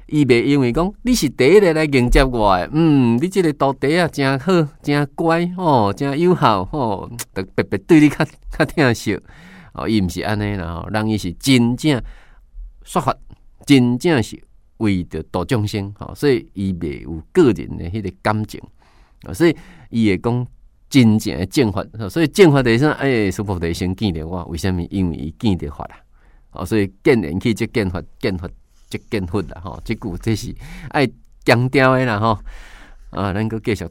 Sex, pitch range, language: male, 95-140 Hz, Chinese